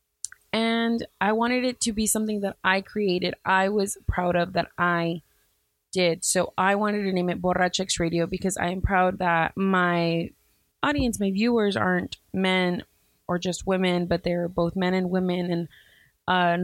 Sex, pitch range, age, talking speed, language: female, 170-195 Hz, 20-39, 170 wpm, English